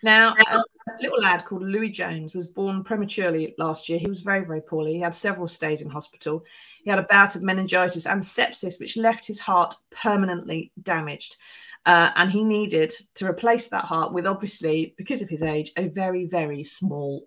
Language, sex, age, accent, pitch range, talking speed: English, female, 30-49, British, 170-215 Hz, 195 wpm